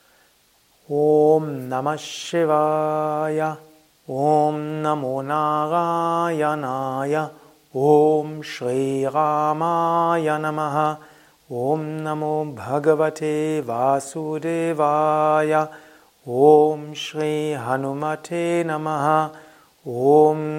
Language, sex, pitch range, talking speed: German, male, 145-155 Hz, 45 wpm